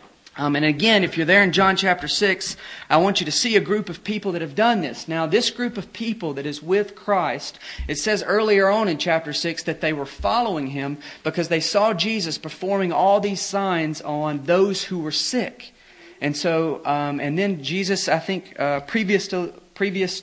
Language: English